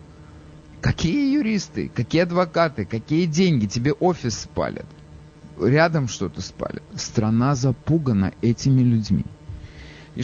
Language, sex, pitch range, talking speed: English, male, 95-150 Hz, 100 wpm